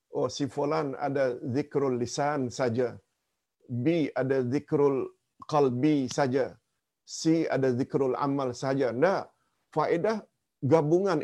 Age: 50-69